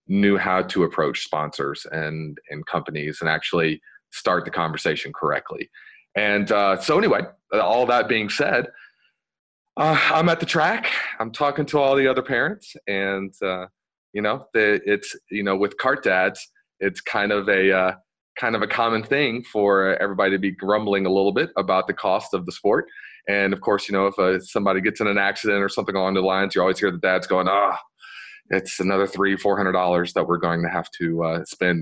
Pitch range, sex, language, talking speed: 90-110 Hz, male, English, 200 wpm